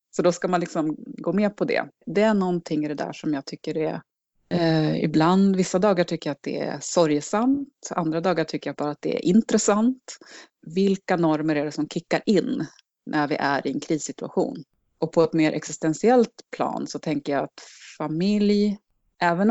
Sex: female